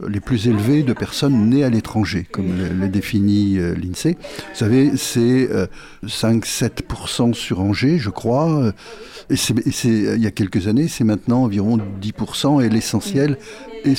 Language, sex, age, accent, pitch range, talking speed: French, male, 50-69, French, 105-135 Hz, 170 wpm